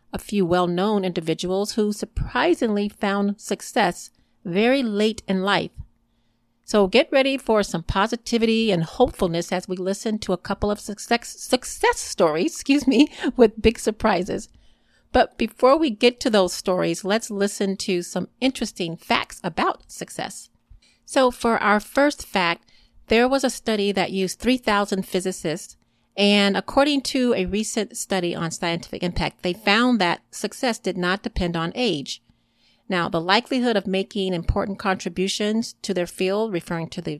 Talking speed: 150 wpm